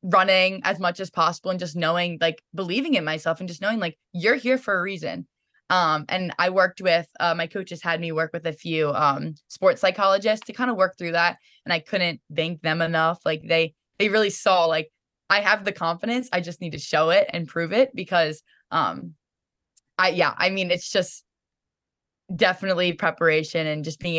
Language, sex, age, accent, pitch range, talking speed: English, female, 10-29, American, 155-190 Hz, 205 wpm